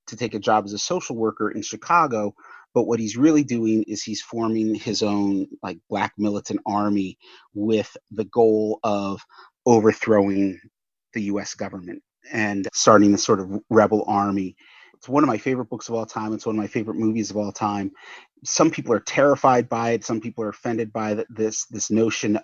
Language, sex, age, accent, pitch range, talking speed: English, male, 30-49, American, 105-115 Hz, 190 wpm